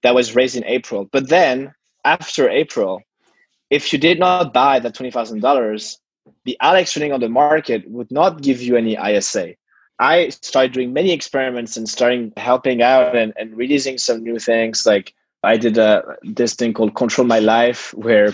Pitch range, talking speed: 115-130 Hz, 175 wpm